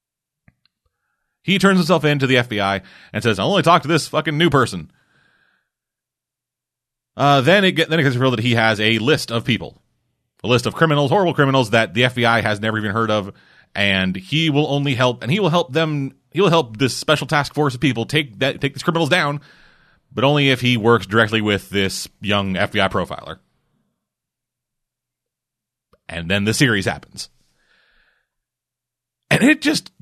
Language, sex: English, male